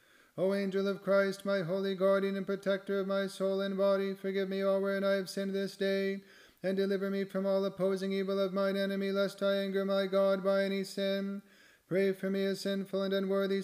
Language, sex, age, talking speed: English, male, 30-49, 210 wpm